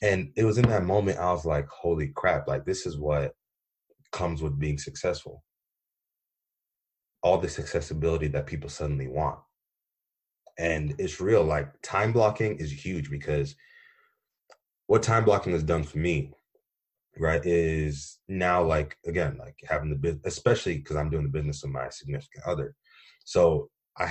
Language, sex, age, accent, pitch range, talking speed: English, male, 20-39, American, 70-90 Hz, 155 wpm